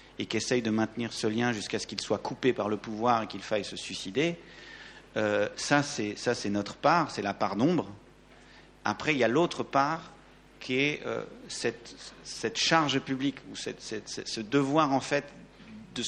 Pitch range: 110-140 Hz